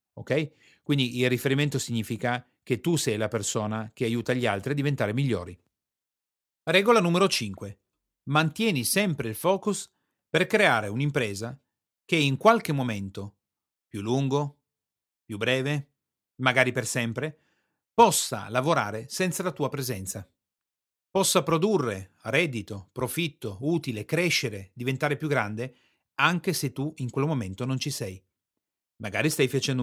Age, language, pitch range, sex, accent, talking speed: 40-59, Italian, 110-155 Hz, male, native, 130 wpm